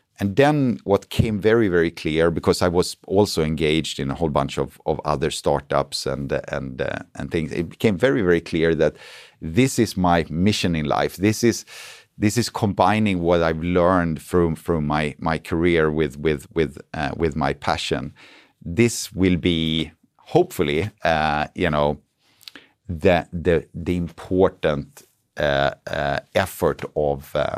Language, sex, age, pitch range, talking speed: English, male, 50-69, 80-105 Hz, 155 wpm